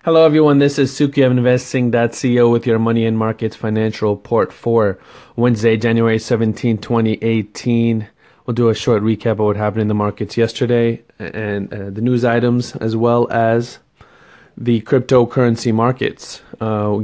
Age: 20-39